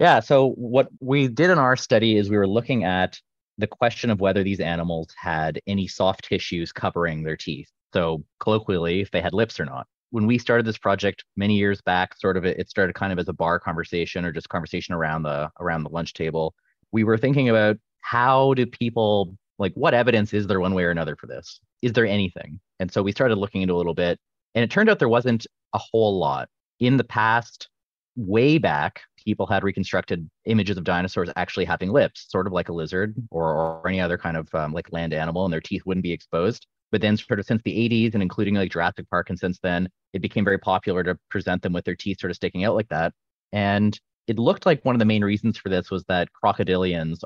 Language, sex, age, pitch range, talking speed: English, male, 30-49, 90-110 Hz, 230 wpm